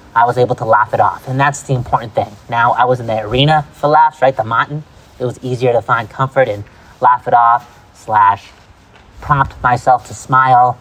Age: 30-49